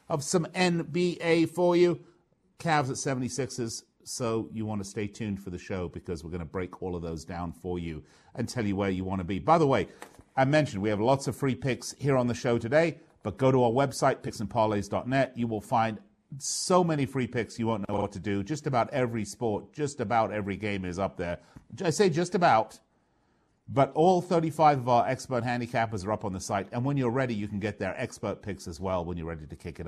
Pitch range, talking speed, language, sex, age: 100-140 Hz, 235 wpm, English, male, 40-59